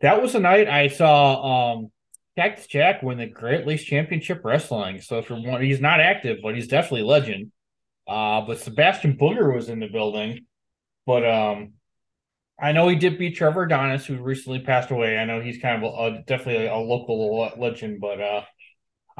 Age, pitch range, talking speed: 20-39, 110-145 Hz, 190 wpm